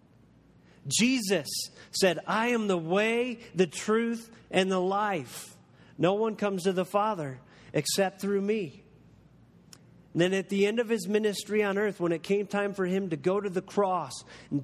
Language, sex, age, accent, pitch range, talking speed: English, male, 40-59, American, 155-195 Hz, 170 wpm